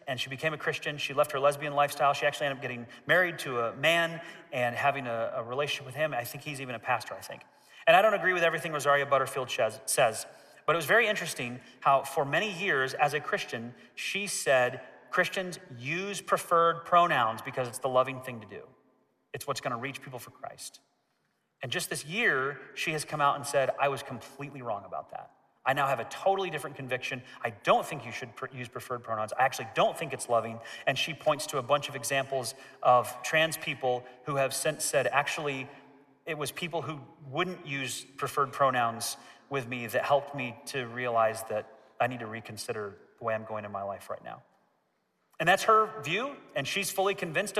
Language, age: English, 30-49